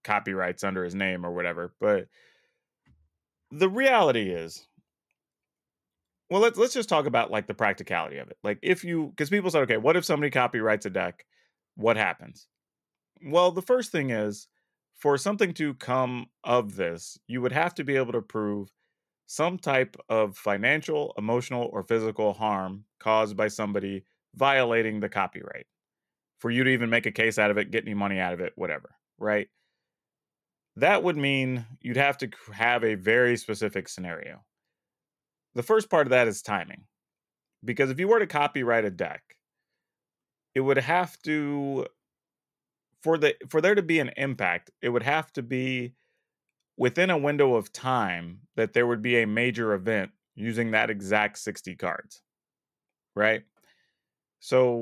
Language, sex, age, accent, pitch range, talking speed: English, male, 30-49, American, 105-145 Hz, 165 wpm